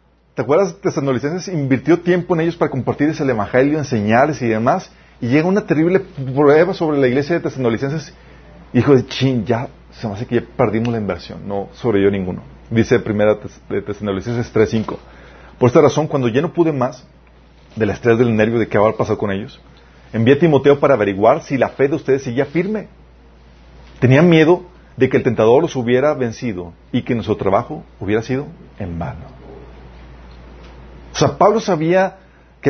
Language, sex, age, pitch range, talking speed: Spanish, male, 40-59, 105-155 Hz, 180 wpm